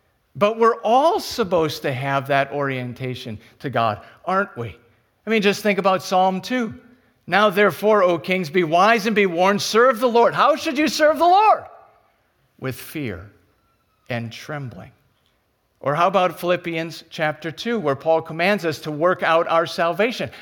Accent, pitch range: American, 125-200 Hz